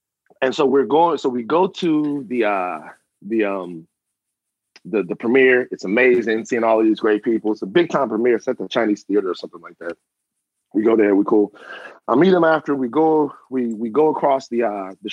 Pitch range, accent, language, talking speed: 110-155 Hz, American, English, 215 wpm